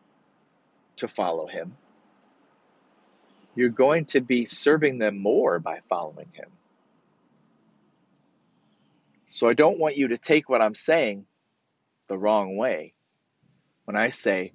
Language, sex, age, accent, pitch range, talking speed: English, male, 40-59, American, 115-150 Hz, 120 wpm